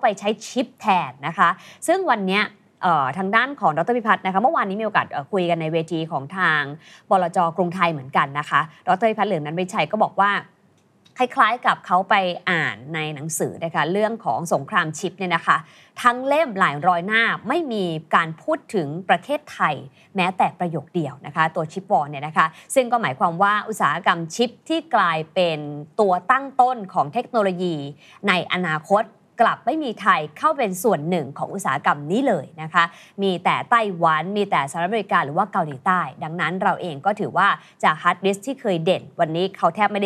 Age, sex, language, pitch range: 20-39, female, Thai, 165-215 Hz